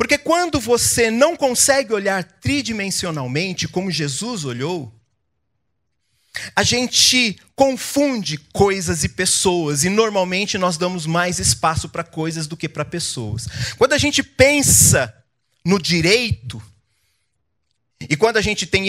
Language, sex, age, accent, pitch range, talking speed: Portuguese, male, 40-59, Brazilian, 115-175 Hz, 125 wpm